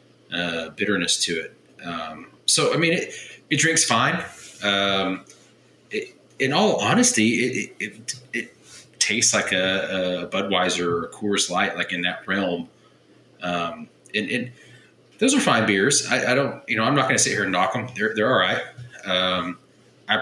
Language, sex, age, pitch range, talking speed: English, male, 30-49, 90-120 Hz, 180 wpm